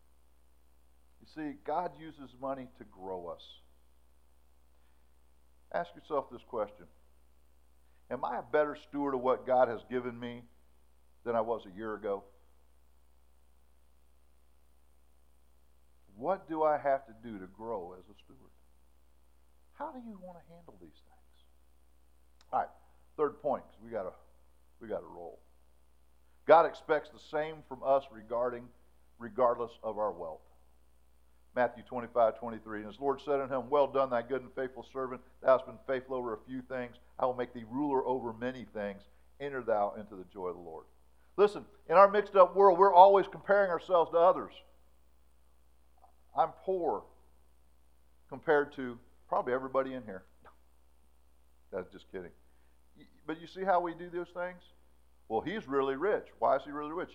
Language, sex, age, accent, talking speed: English, male, 50-69, American, 155 wpm